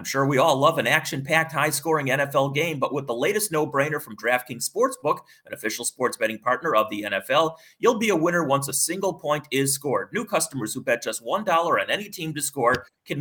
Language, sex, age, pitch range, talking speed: English, male, 30-49, 135-170 Hz, 220 wpm